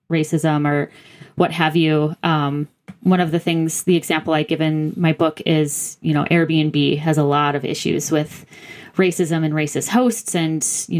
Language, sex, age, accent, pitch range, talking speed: English, female, 20-39, American, 150-170 Hz, 180 wpm